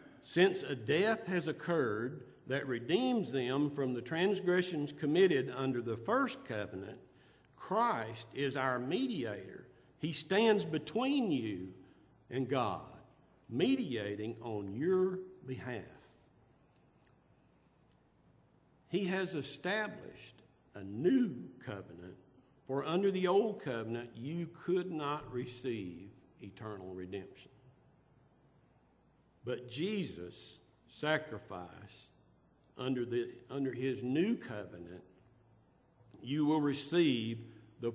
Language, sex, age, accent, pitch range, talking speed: English, male, 60-79, American, 115-155 Hz, 95 wpm